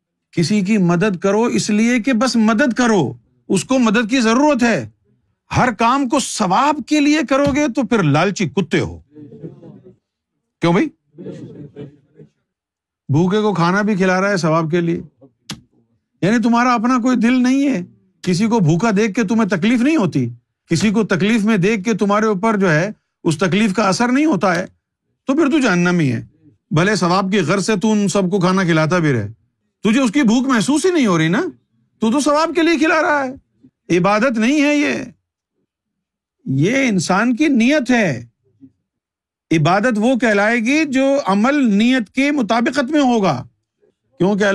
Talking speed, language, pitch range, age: 175 wpm, Urdu, 160-245 Hz, 50-69